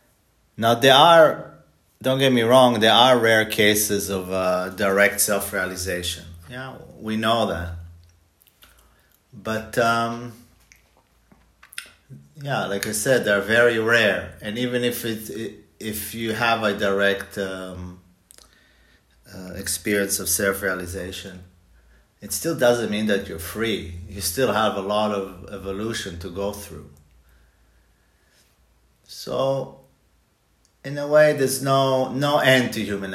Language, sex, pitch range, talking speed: English, male, 90-115 Hz, 125 wpm